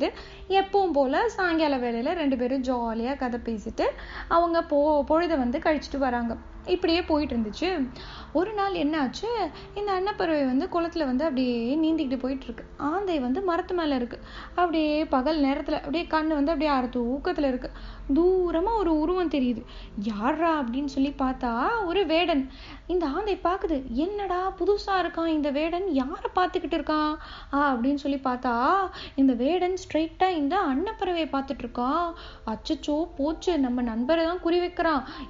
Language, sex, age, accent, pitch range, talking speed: Tamil, female, 20-39, native, 270-340 Hz, 140 wpm